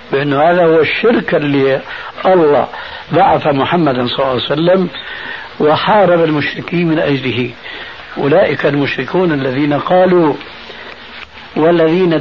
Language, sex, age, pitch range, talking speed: Arabic, male, 60-79, 140-175 Hz, 105 wpm